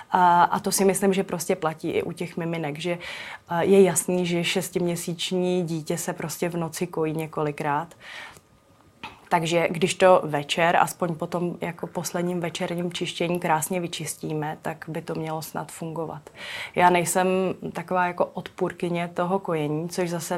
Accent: native